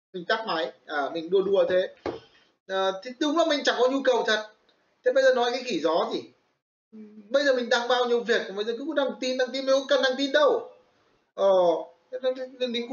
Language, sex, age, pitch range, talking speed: Vietnamese, male, 20-39, 180-280 Hz, 220 wpm